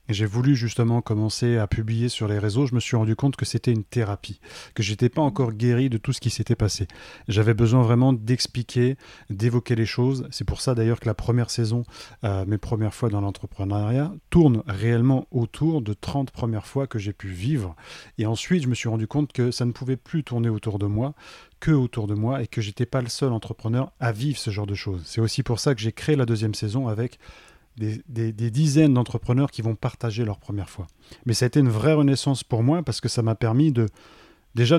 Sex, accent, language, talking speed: male, French, French, 230 wpm